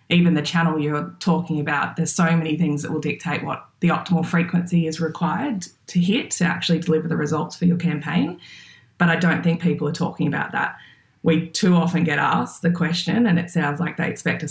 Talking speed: 215 wpm